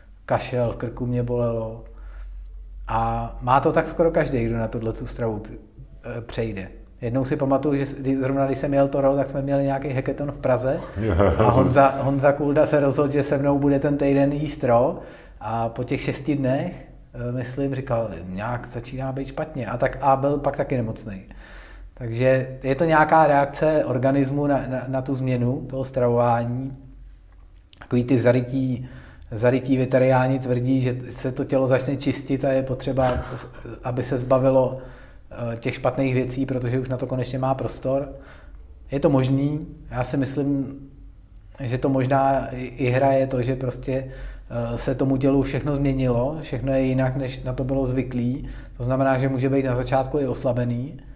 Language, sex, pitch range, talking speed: Czech, male, 120-135 Hz, 170 wpm